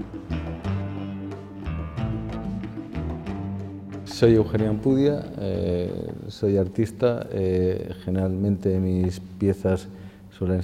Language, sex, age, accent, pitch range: Spanish, male, 50-69, Spanish, 95-105 Hz